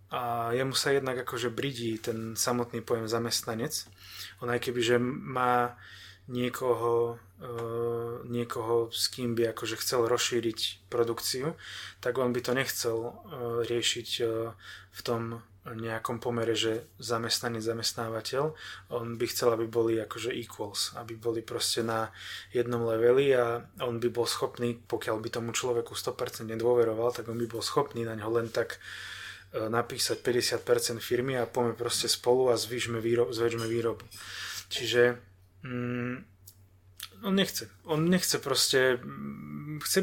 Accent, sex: native, male